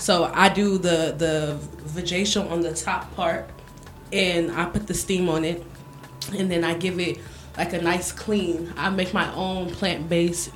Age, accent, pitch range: 20-39, American, 160-185 Hz